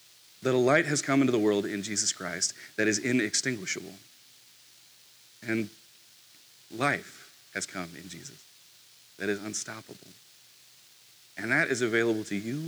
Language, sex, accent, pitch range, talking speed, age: English, male, American, 105-125 Hz, 135 wpm, 40-59